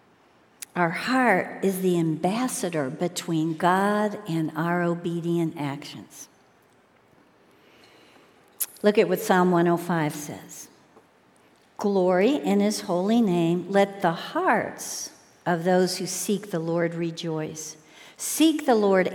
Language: English